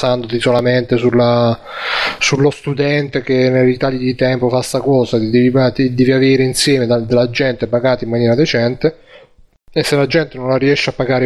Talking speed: 165 wpm